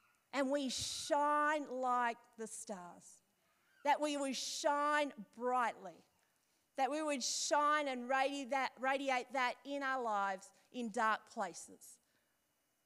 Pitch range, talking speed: 205-255 Hz, 110 wpm